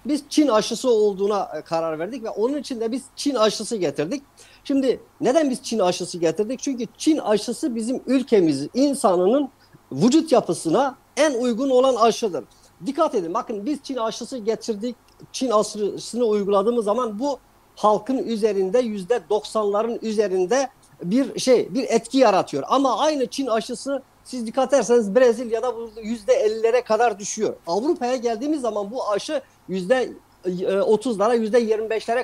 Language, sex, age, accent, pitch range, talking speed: Turkish, male, 50-69, native, 210-265 Hz, 135 wpm